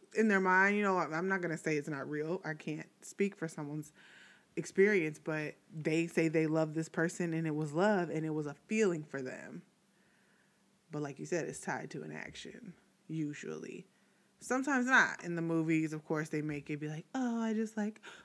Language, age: English, 20-39